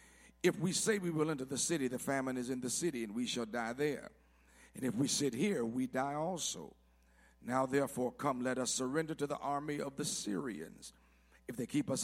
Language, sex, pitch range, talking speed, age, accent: English, male, 125-155 Hz, 215 wpm, 50-69, American